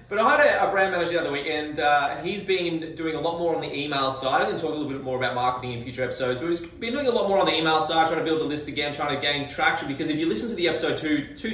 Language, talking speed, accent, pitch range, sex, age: English, 335 wpm, Australian, 140-180 Hz, male, 20-39